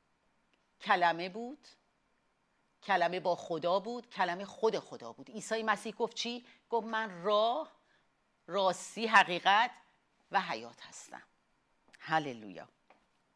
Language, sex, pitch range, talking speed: Persian, female, 160-220 Hz, 105 wpm